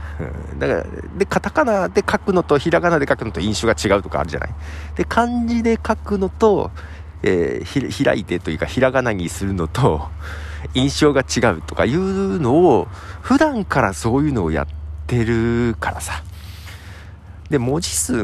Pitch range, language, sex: 80-120 Hz, Japanese, male